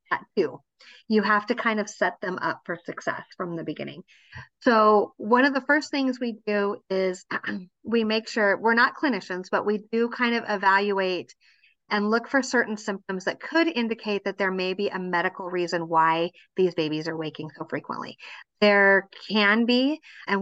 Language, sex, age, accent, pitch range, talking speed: English, female, 30-49, American, 175-215 Hz, 180 wpm